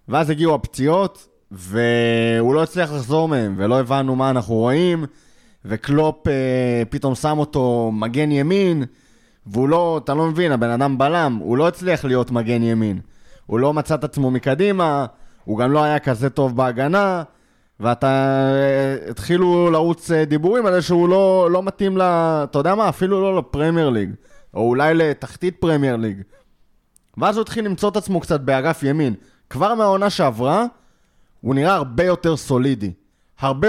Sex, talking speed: male, 155 wpm